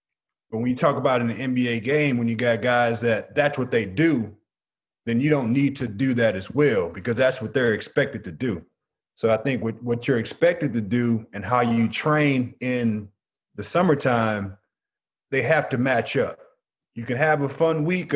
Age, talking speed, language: 30-49, 200 wpm, English